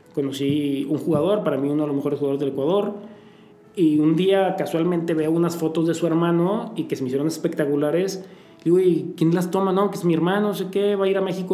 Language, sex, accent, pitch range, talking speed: Spanish, male, Mexican, 150-180 Hz, 240 wpm